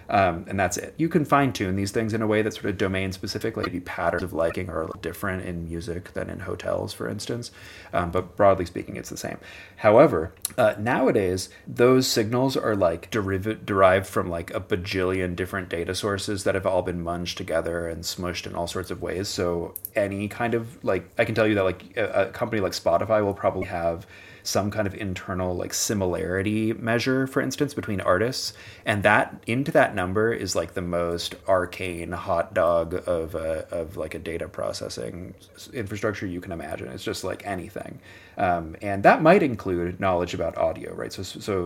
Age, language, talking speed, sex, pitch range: 30-49, English, 195 wpm, male, 90-110 Hz